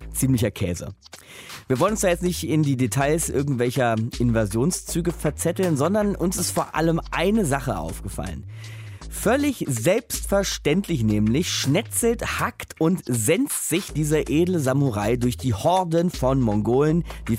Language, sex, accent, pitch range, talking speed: German, male, German, 105-155 Hz, 135 wpm